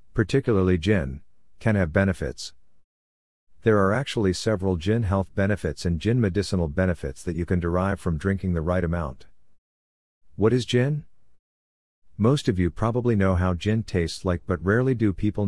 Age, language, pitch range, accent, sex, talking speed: 50-69, English, 85-100 Hz, American, male, 160 wpm